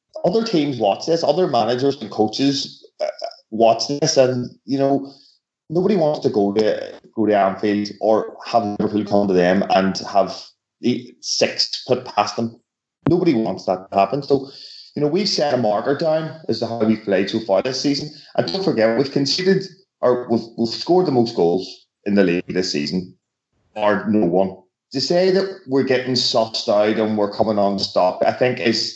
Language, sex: English, male